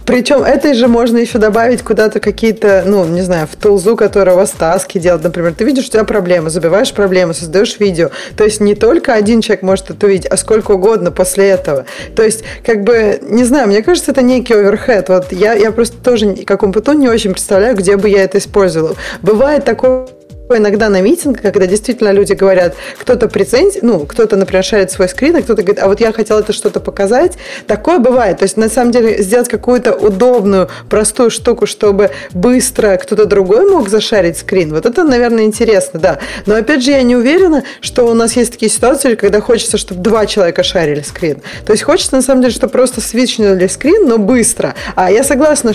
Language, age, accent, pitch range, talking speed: Russian, 20-39, native, 195-245 Hz, 200 wpm